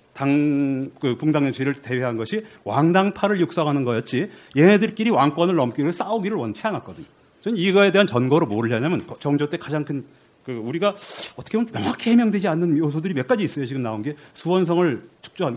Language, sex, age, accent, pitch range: Korean, male, 40-59, native, 145-210 Hz